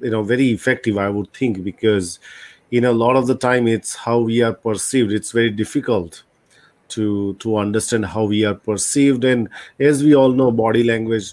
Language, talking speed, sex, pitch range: English, 195 wpm, male, 110-135 Hz